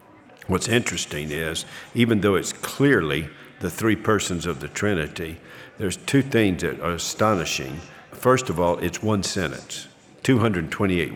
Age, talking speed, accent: 50-69, 140 wpm, American